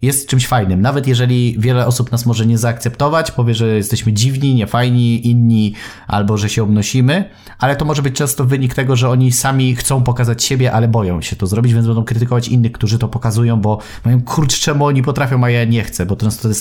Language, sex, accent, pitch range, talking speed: Polish, male, native, 115-130 Hz, 215 wpm